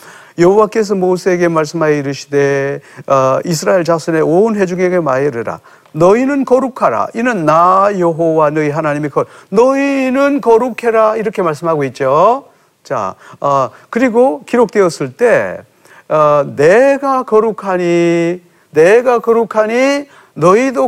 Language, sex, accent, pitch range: Korean, male, native, 155-235 Hz